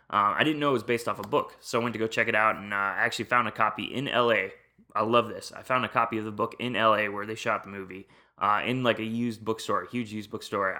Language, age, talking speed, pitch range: English, 20-39, 295 wpm, 105-120 Hz